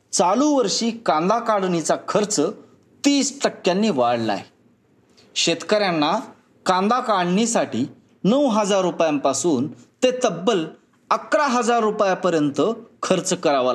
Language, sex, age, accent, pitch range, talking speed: Marathi, male, 20-39, native, 160-235 Hz, 90 wpm